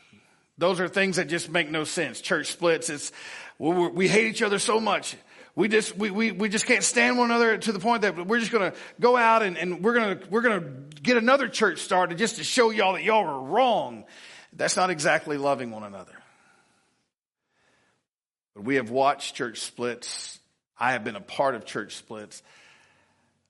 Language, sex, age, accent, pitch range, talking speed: English, male, 50-69, American, 130-215 Hz, 190 wpm